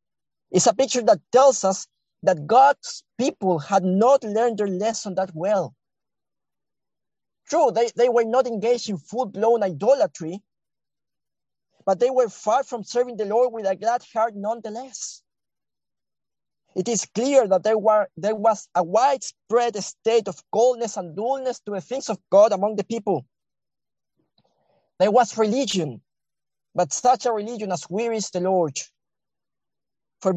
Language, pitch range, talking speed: English, 185-230 Hz, 145 wpm